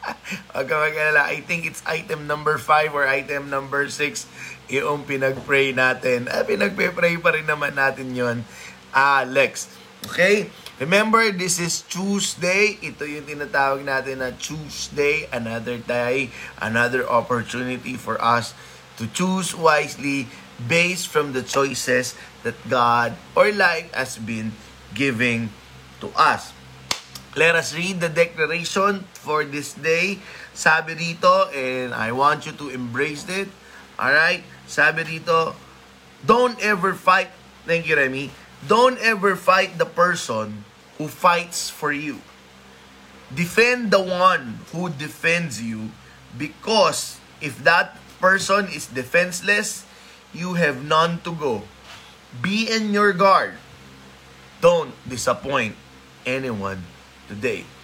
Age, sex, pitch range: 20-39, male, 125-175 Hz